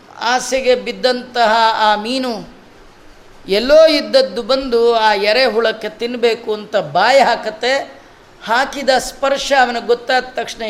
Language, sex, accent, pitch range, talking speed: Kannada, female, native, 215-255 Hz, 105 wpm